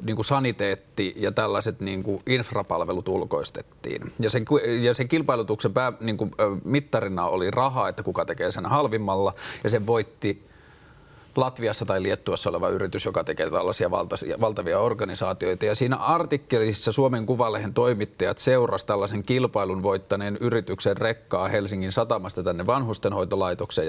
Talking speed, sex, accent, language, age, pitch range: 135 wpm, male, native, Finnish, 30-49, 105-130 Hz